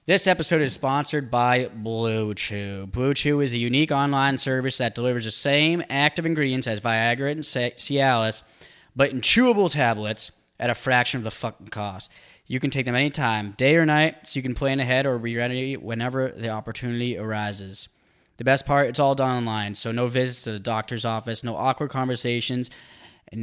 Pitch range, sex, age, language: 115-140 Hz, male, 20-39, English